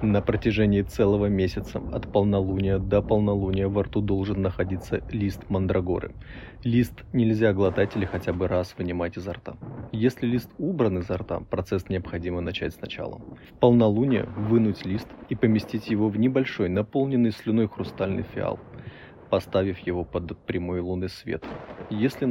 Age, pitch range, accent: 20-39, 95-115 Hz, native